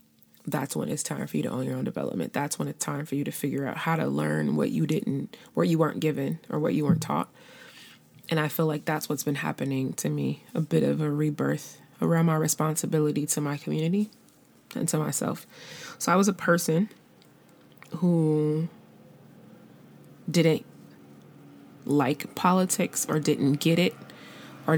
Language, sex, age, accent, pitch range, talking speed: English, female, 20-39, American, 140-165 Hz, 175 wpm